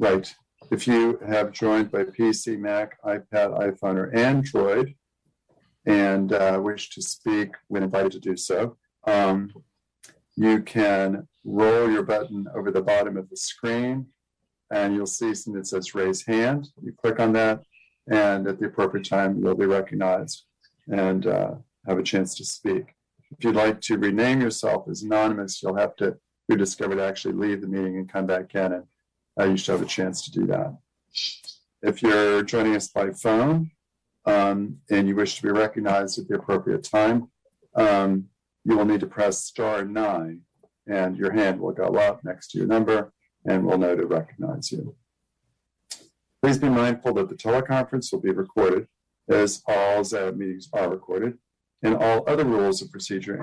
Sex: male